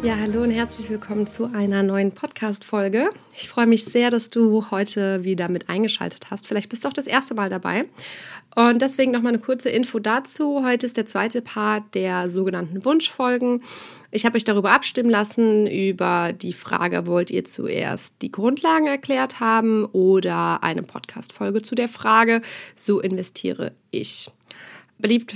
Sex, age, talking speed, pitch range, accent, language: female, 20-39, 165 wpm, 190-230 Hz, German, German